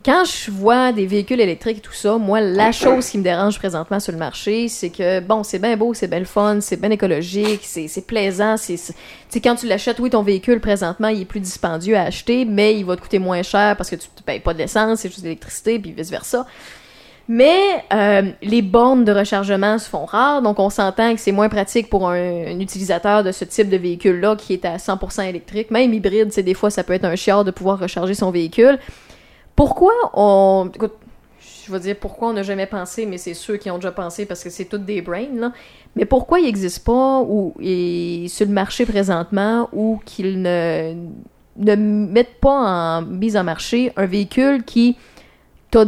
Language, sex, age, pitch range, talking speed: French, female, 20-39, 190-230 Hz, 215 wpm